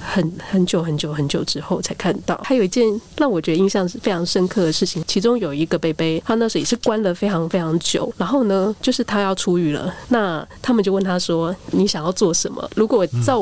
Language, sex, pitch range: Chinese, female, 170-215 Hz